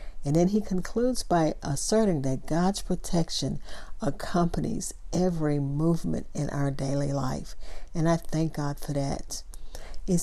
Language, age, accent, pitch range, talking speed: English, 50-69, American, 150-185 Hz, 135 wpm